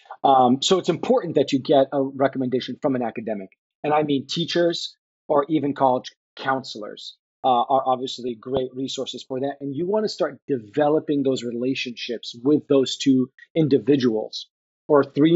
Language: English